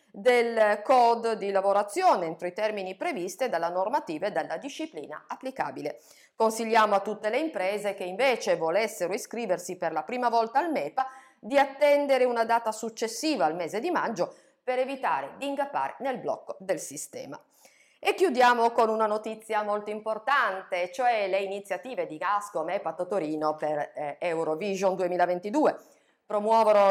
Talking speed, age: 145 wpm, 50-69